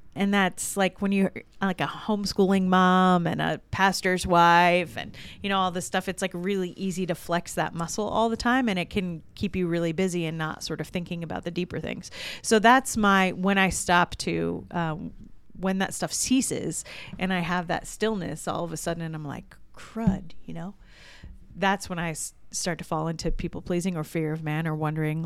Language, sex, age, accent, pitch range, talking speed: English, female, 30-49, American, 170-200 Hz, 210 wpm